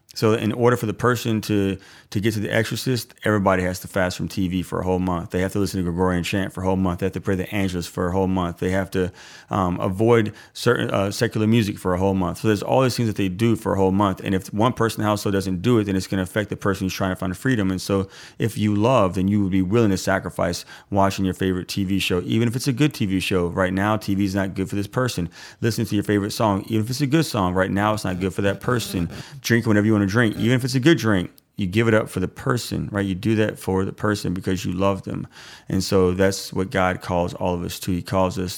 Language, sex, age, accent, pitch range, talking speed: English, male, 30-49, American, 95-110 Hz, 285 wpm